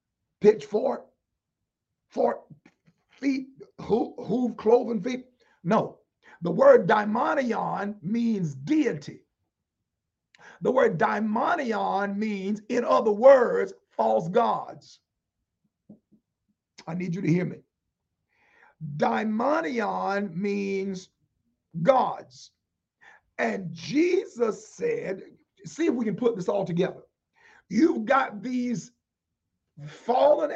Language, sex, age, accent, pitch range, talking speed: English, male, 50-69, American, 180-250 Hz, 90 wpm